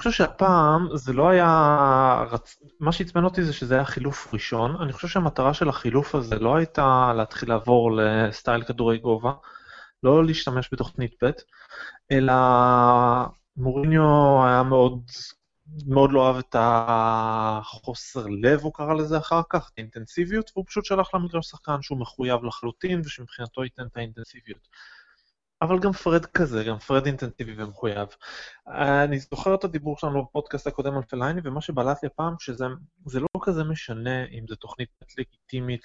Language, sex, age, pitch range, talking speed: Hebrew, male, 20-39, 120-155 Hz, 145 wpm